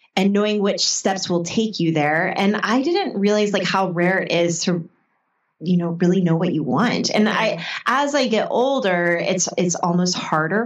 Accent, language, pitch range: American, English, 170-210 Hz